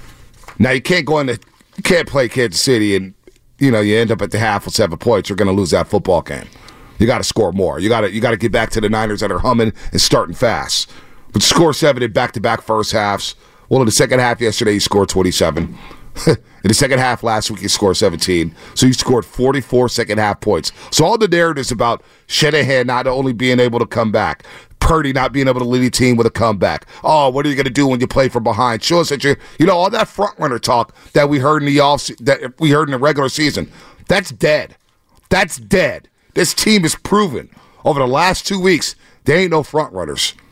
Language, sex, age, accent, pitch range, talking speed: English, male, 40-59, American, 115-150 Hz, 240 wpm